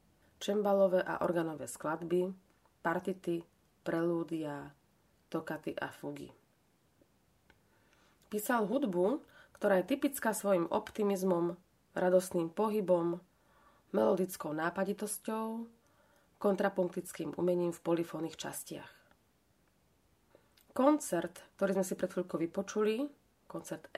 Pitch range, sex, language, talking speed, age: 170-205 Hz, female, Slovak, 85 wpm, 30-49